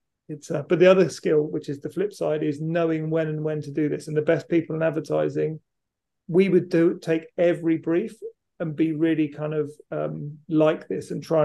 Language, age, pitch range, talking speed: English, 40-59, 155-170 Hz, 215 wpm